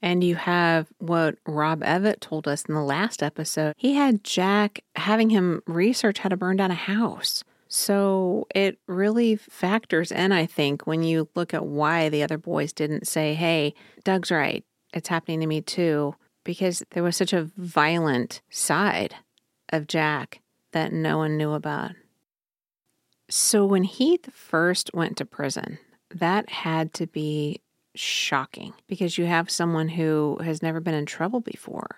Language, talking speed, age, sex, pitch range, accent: English, 160 wpm, 40-59, female, 150-185 Hz, American